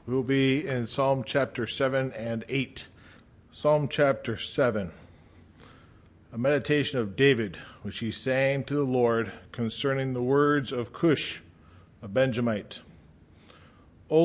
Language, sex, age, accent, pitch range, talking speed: English, male, 50-69, American, 110-150 Hz, 125 wpm